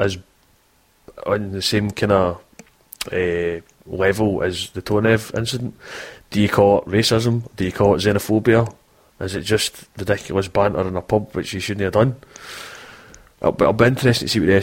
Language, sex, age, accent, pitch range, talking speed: English, male, 20-39, British, 95-115 Hz, 170 wpm